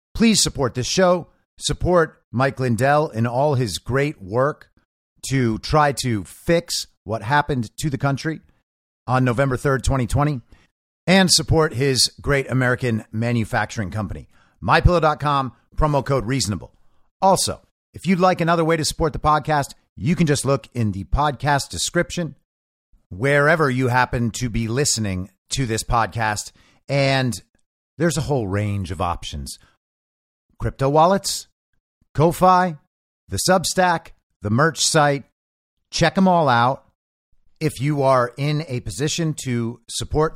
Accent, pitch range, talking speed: American, 110-150 Hz, 135 wpm